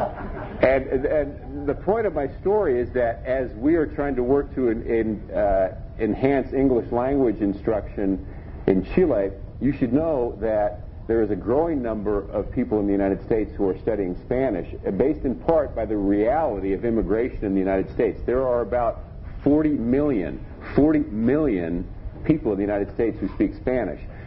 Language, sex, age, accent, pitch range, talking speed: Spanish, male, 50-69, American, 95-120 Hz, 175 wpm